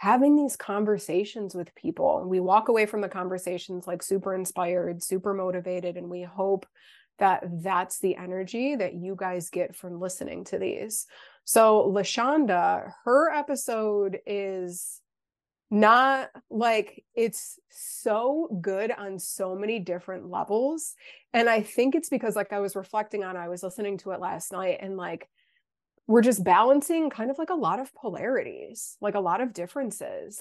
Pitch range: 185-230 Hz